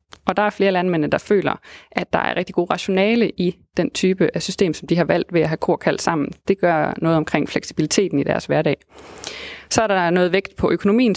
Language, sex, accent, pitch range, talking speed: Danish, female, native, 170-205 Hz, 235 wpm